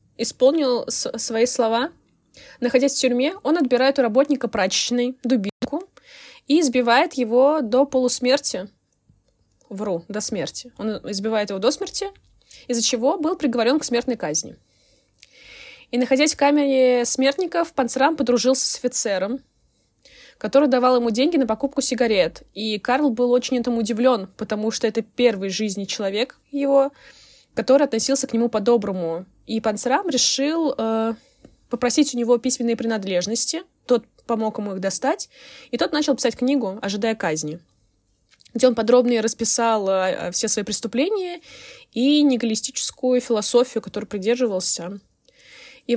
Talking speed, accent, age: 135 wpm, native, 20-39